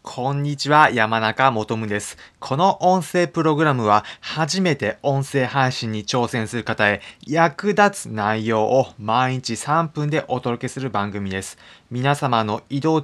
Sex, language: male, Japanese